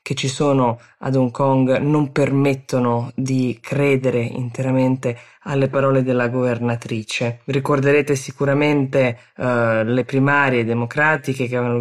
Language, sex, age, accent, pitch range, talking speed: Italian, female, 20-39, native, 125-145 Hz, 115 wpm